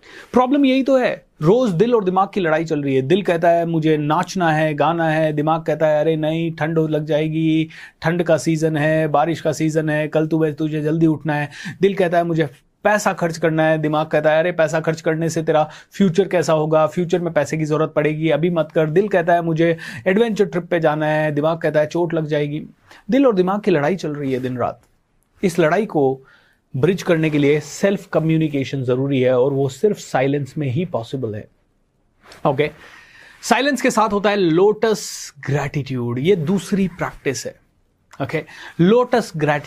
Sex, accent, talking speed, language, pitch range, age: male, native, 200 wpm, Hindi, 150-190 Hz, 30-49